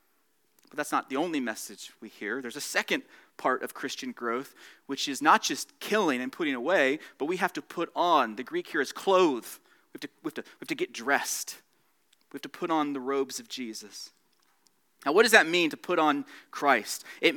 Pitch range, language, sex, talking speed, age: 150-215 Hz, English, male, 205 wpm, 30-49